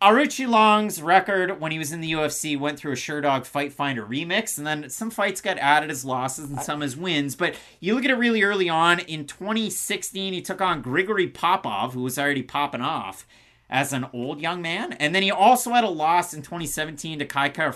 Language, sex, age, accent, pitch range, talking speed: English, male, 30-49, American, 130-175 Hz, 215 wpm